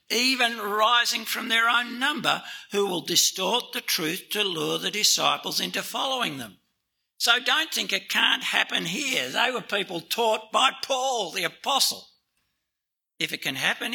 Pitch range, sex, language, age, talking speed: 205-255 Hz, male, English, 60-79, 160 wpm